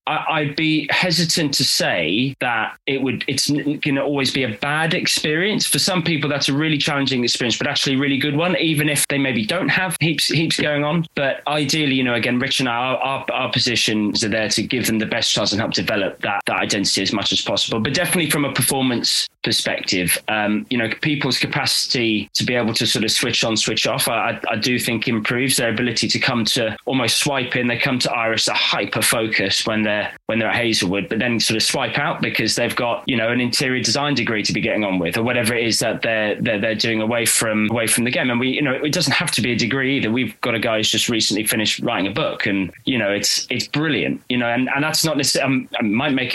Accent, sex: British, male